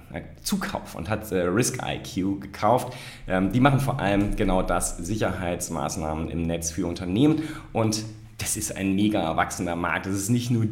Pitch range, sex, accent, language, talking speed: 85-120 Hz, male, German, German, 155 wpm